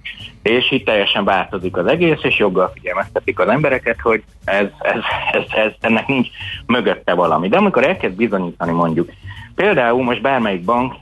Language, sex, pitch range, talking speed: Hungarian, male, 100-125 Hz, 160 wpm